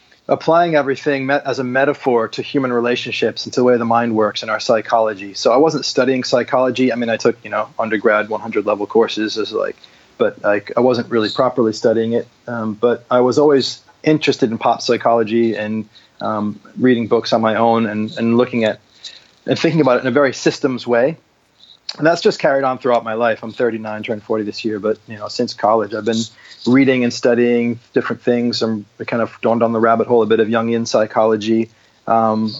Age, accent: 30-49, American